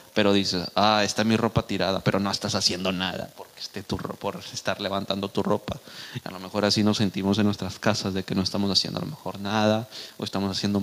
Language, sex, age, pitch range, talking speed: Spanish, male, 30-49, 100-120 Hz, 240 wpm